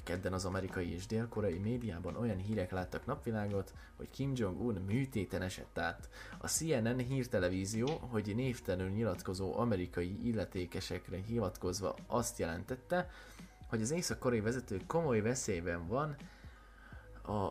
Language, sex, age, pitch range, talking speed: Hungarian, male, 20-39, 90-115 Hz, 125 wpm